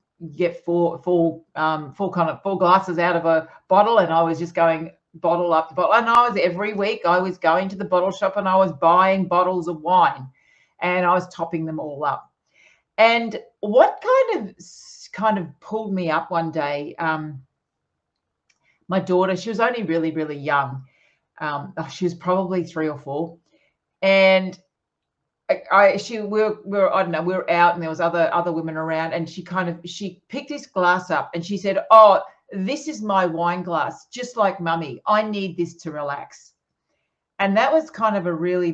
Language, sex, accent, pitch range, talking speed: English, female, Australian, 160-195 Hz, 200 wpm